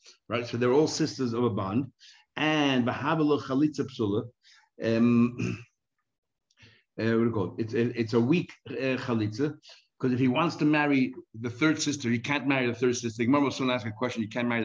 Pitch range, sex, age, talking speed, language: 115-145 Hz, male, 60-79, 170 wpm, English